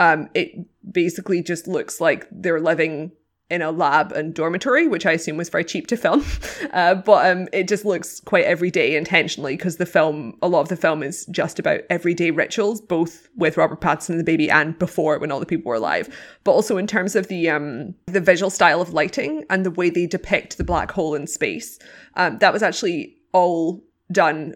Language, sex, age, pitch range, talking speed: English, female, 20-39, 165-195 Hz, 210 wpm